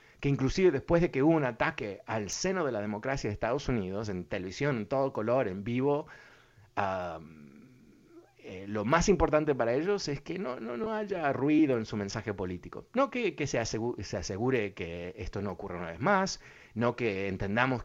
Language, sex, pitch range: Spanish, male, 95-135 Hz